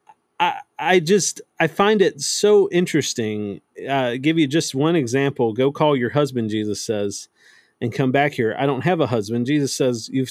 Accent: American